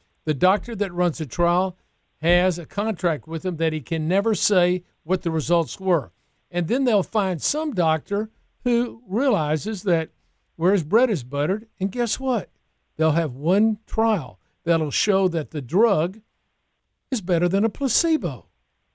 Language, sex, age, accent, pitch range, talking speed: English, male, 50-69, American, 150-195 Hz, 160 wpm